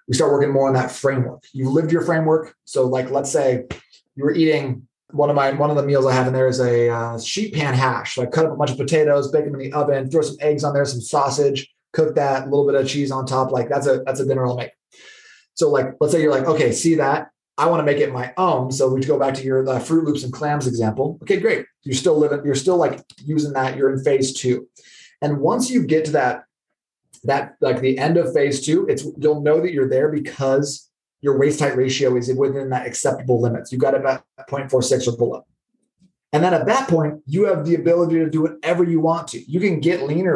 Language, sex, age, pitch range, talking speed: English, male, 20-39, 135-165 Hz, 250 wpm